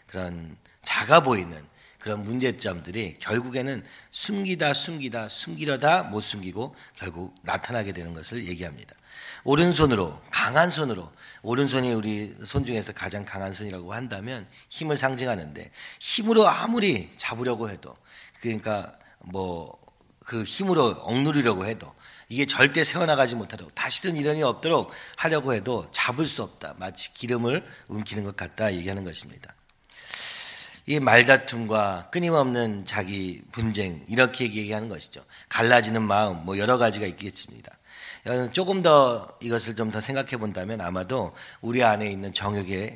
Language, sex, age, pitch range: Korean, male, 40-59, 100-135 Hz